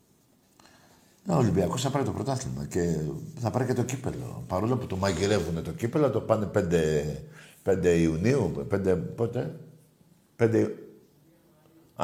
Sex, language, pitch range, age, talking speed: male, Greek, 115-165 Hz, 50-69, 130 wpm